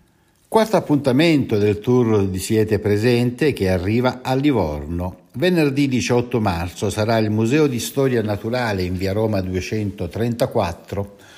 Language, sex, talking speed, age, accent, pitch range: Italian, male, 125 wpm, 60-79, native, 95-140 Hz